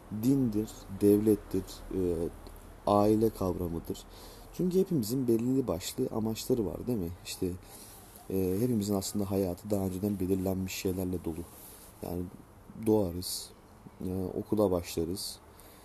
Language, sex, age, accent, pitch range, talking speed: Turkish, male, 30-49, native, 95-110 Hz, 105 wpm